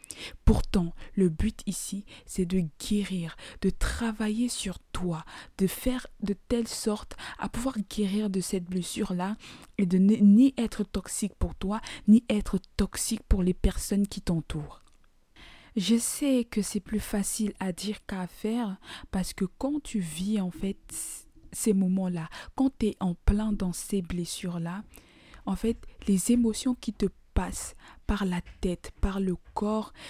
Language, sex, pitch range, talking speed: French, female, 185-220 Hz, 160 wpm